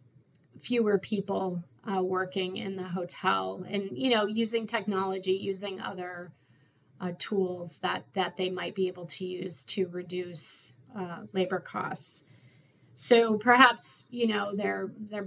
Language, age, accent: English, 20-39, American